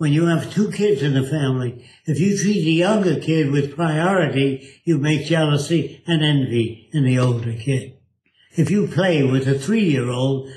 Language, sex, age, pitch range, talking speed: English, male, 60-79, 140-185 Hz, 175 wpm